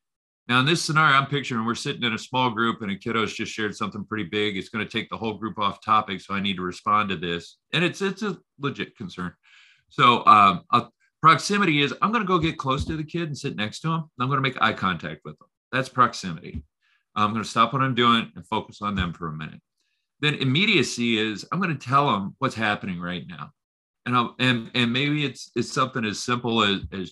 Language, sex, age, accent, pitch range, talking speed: English, male, 40-59, American, 100-135 Hz, 240 wpm